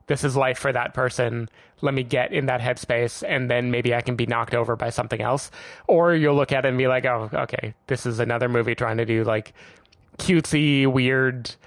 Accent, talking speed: American, 220 wpm